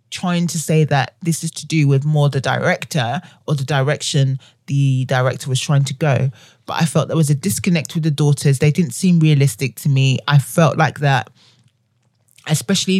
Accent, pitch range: British, 130-170 Hz